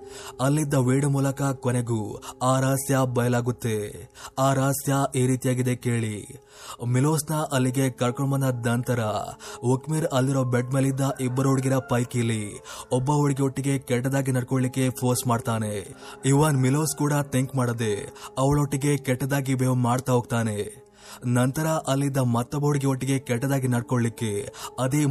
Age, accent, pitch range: 20-39, native, 120-135 Hz